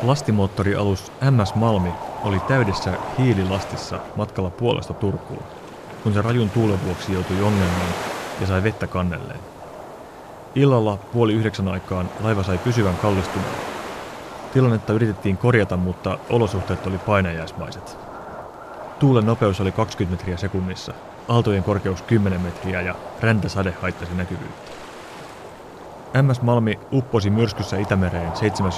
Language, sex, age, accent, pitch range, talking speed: Finnish, male, 30-49, native, 95-110 Hz, 115 wpm